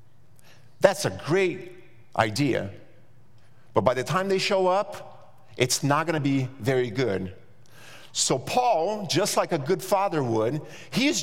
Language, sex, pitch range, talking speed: English, male, 135-185 Hz, 140 wpm